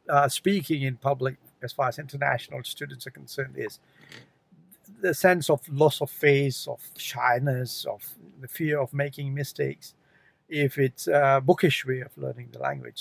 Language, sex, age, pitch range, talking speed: English, male, 60-79, 135-160 Hz, 160 wpm